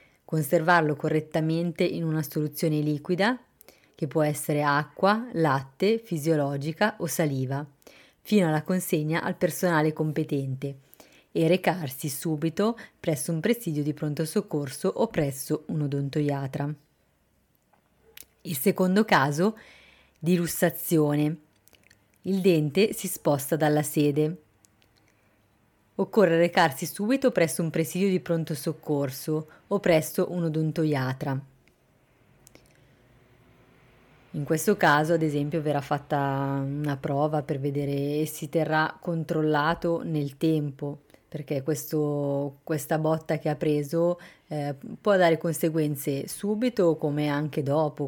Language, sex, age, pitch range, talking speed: Italian, female, 30-49, 145-170 Hz, 110 wpm